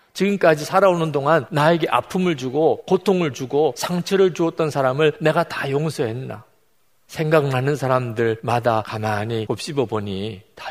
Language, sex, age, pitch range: Korean, male, 40-59, 110-155 Hz